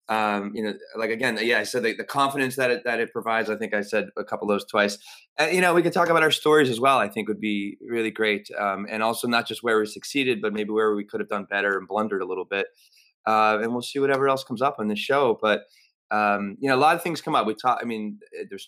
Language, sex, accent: English, male, American